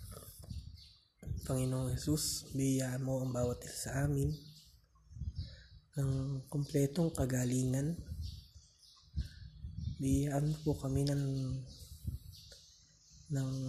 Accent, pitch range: native, 100-140 Hz